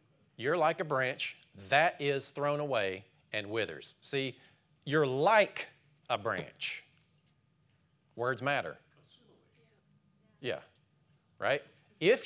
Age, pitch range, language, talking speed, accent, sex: 40-59, 120-155 Hz, English, 100 wpm, American, male